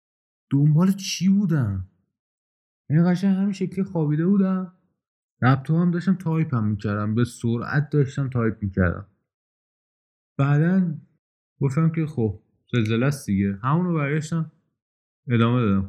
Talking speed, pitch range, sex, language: 120 wpm, 105-160 Hz, male, Persian